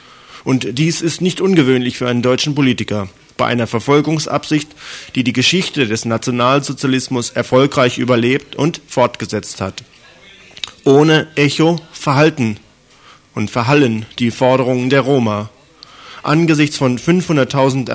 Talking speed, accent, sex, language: 115 wpm, German, male, German